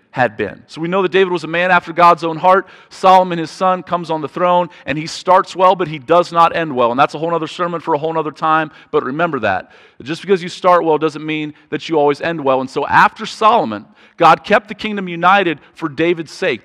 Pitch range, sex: 140-175 Hz, male